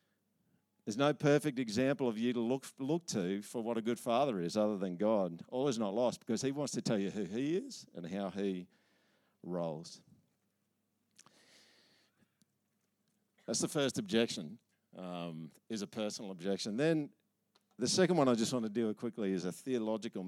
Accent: Australian